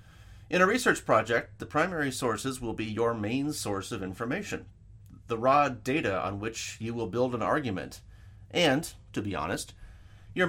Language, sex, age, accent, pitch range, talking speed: English, male, 30-49, American, 100-130 Hz, 165 wpm